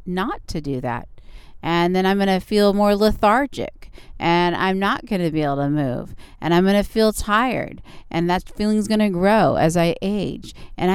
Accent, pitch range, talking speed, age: American, 175-225 Hz, 205 wpm, 40-59